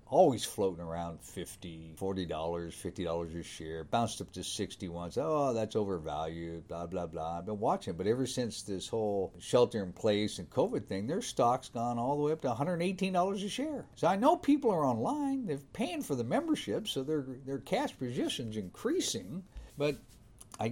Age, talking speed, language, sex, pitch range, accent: 50-69, 190 wpm, English, male, 95-125 Hz, American